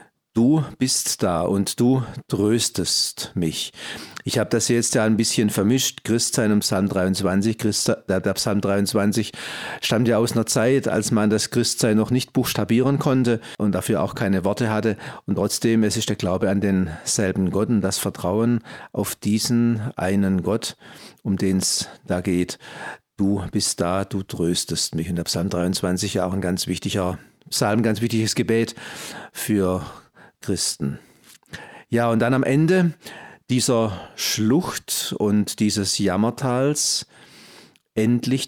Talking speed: 155 wpm